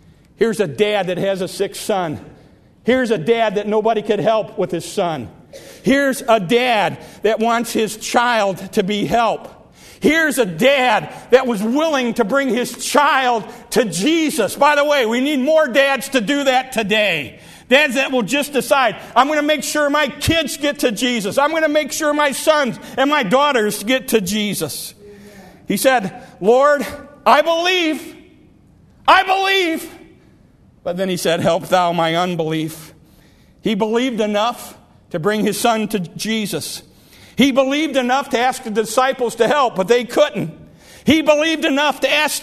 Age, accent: 50-69, American